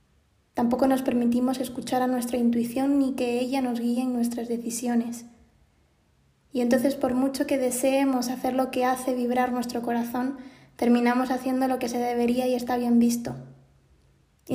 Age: 20-39